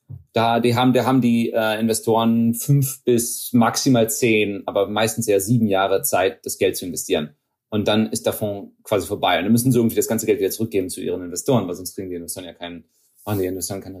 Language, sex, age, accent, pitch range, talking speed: German, male, 30-49, German, 105-125 Hz, 225 wpm